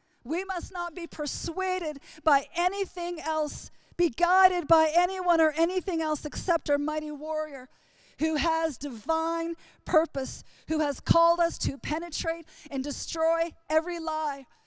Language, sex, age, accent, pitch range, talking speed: English, female, 40-59, American, 280-330 Hz, 135 wpm